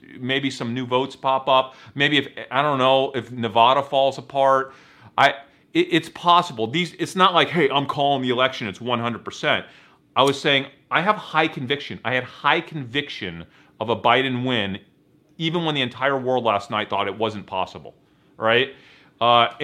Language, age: English, 40-59